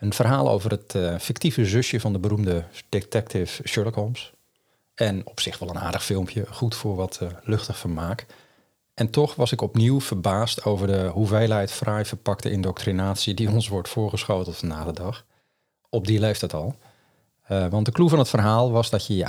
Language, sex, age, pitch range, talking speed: Dutch, male, 40-59, 90-110 Hz, 185 wpm